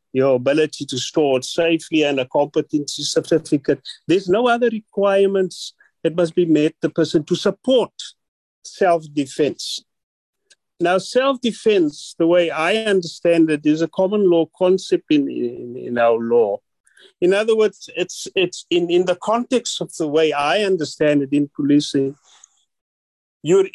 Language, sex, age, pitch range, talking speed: English, male, 50-69, 160-225 Hz, 145 wpm